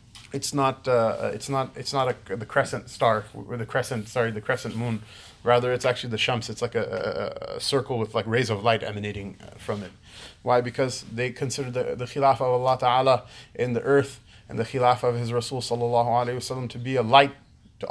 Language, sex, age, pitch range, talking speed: English, male, 20-39, 110-125 Hz, 215 wpm